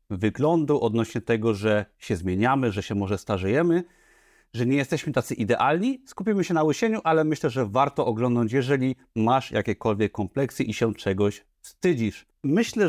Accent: native